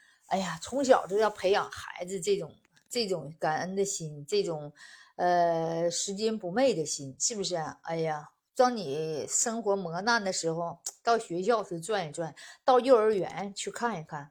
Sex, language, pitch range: female, Chinese, 165-215 Hz